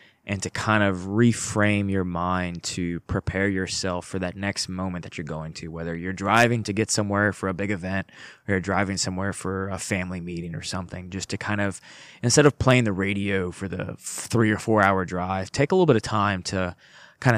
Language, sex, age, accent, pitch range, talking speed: English, male, 20-39, American, 90-105 Hz, 210 wpm